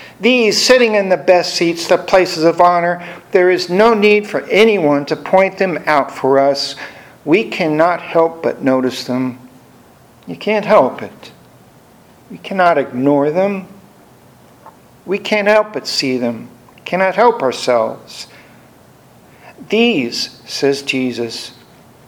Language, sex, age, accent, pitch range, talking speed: English, male, 60-79, American, 130-195 Hz, 130 wpm